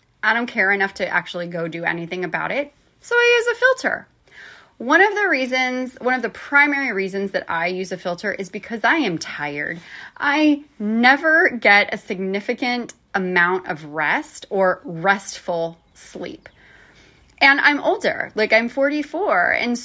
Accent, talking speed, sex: American, 160 wpm, female